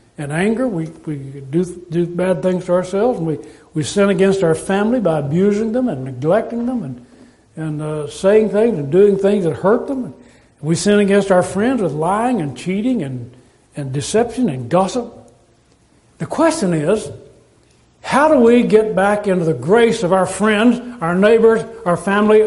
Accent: American